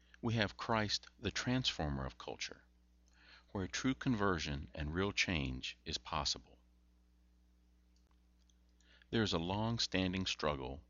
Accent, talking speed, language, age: American, 110 wpm, English, 60-79